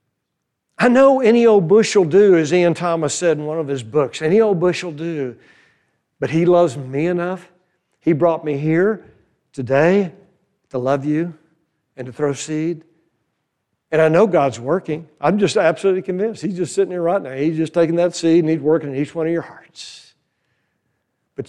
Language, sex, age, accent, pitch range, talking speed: English, male, 60-79, American, 145-185 Hz, 190 wpm